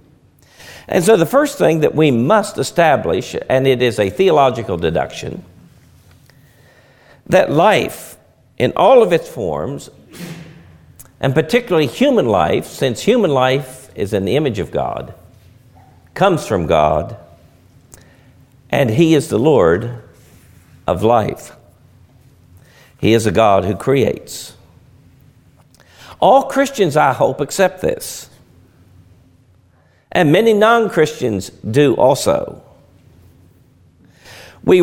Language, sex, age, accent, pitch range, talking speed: English, male, 60-79, American, 125-180 Hz, 110 wpm